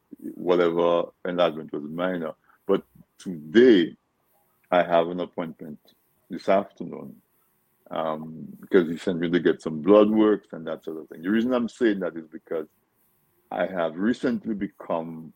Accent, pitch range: French, 80-95 Hz